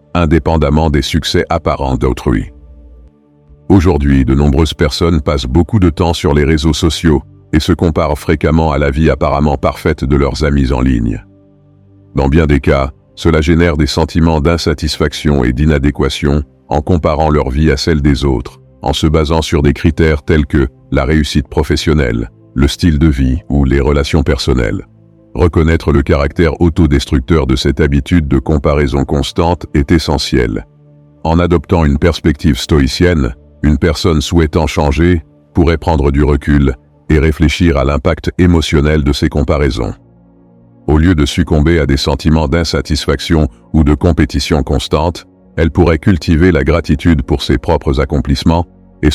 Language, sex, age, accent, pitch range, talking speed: French, male, 50-69, French, 70-85 Hz, 150 wpm